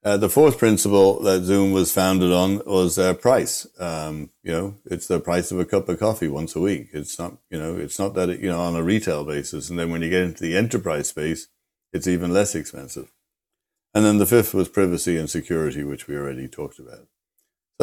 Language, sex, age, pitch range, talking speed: English, male, 60-79, 80-95 Hz, 225 wpm